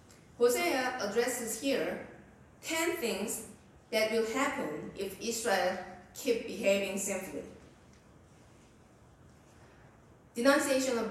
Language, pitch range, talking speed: English, 195-275 Hz, 80 wpm